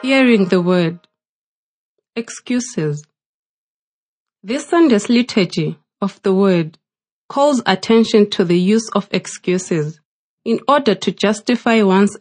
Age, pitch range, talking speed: 30-49, 175-230 Hz, 110 wpm